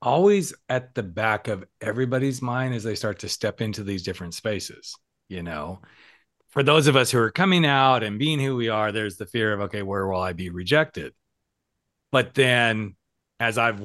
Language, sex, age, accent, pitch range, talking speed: English, male, 40-59, American, 100-130 Hz, 195 wpm